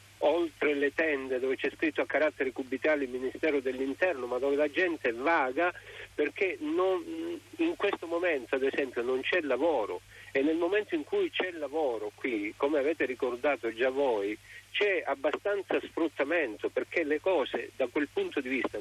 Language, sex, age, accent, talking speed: Italian, male, 50-69, native, 165 wpm